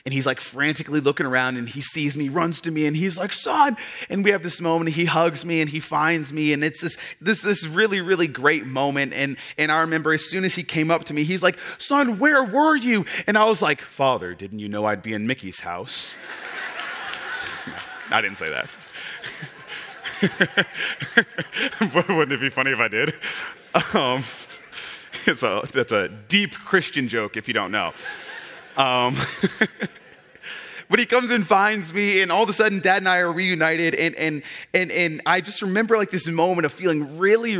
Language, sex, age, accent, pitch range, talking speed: English, male, 30-49, American, 130-180 Hz, 195 wpm